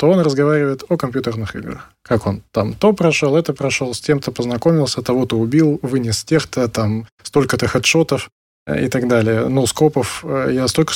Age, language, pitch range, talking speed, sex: 20-39, Russian, 115-145 Hz, 170 wpm, male